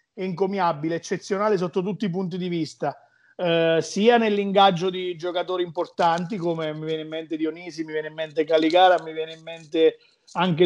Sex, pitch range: male, 165-195 Hz